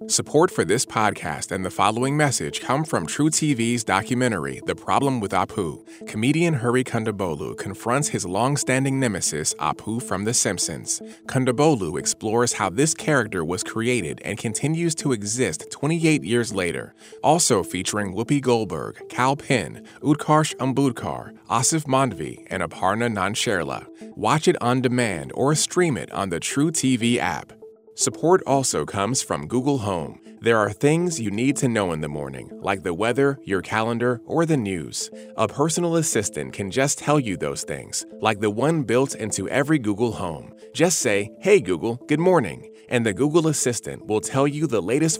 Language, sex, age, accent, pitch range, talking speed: English, male, 30-49, American, 110-145 Hz, 165 wpm